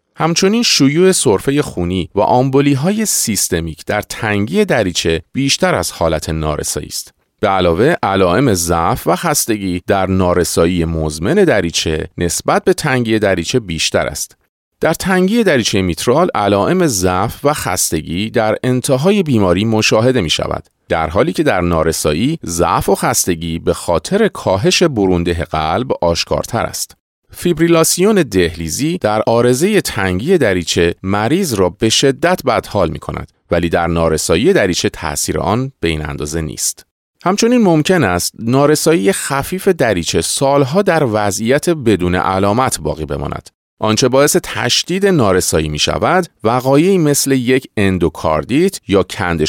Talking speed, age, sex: 130 wpm, 40-59, male